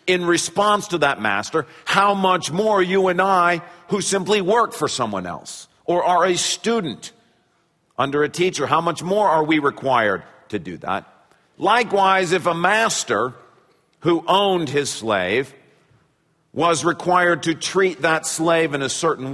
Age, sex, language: 50-69, male, English